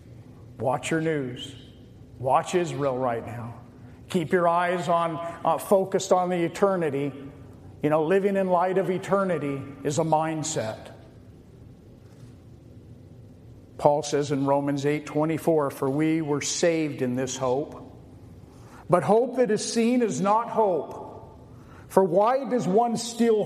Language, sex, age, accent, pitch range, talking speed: English, male, 50-69, American, 145-230 Hz, 130 wpm